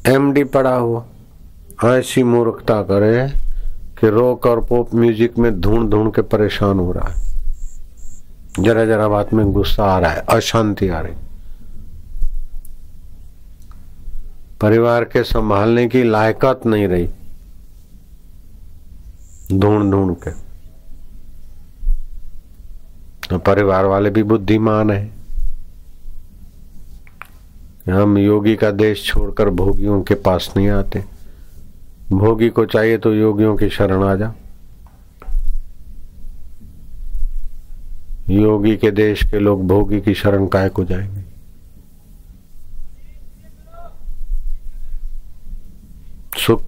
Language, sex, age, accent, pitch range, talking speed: Hindi, male, 50-69, native, 80-105 Hz, 95 wpm